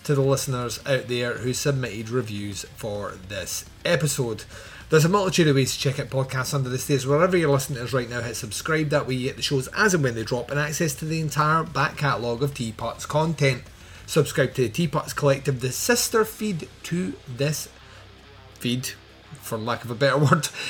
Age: 30-49